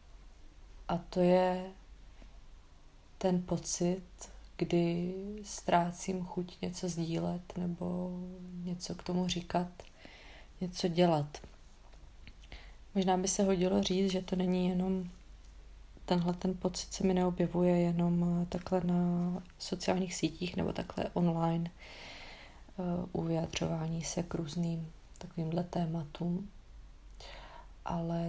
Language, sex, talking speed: Czech, female, 100 wpm